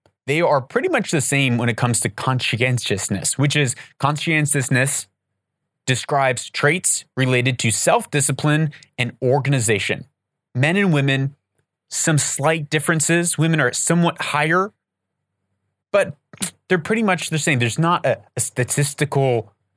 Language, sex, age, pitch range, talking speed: English, male, 30-49, 120-155 Hz, 125 wpm